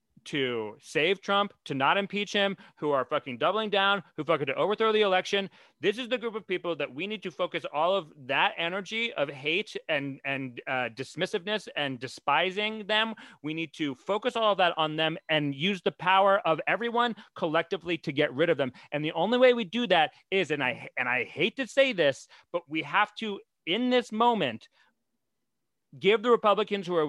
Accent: American